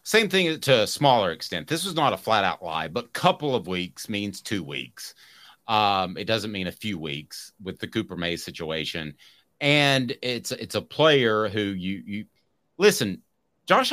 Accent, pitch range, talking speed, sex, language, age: American, 100-130 Hz, 185 wpm, male, English, 30-49